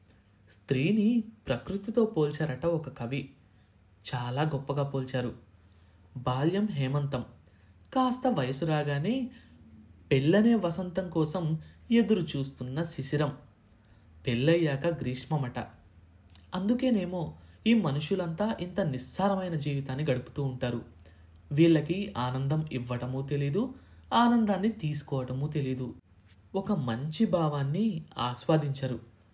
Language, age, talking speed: Telugu, 20-39, 80 wpm